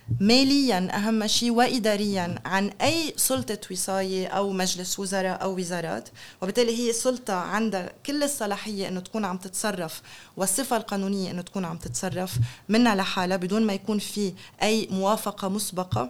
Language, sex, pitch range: Arabic, female, 190-235 Hz